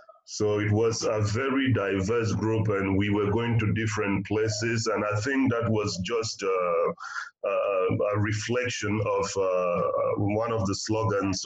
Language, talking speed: English, 155 wpm